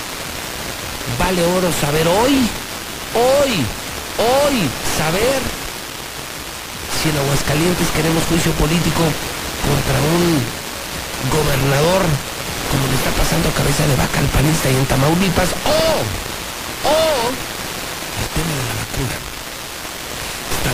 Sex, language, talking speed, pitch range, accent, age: male, Spanish, 110 wpm, 125-165 Hz, Mexican, 50-69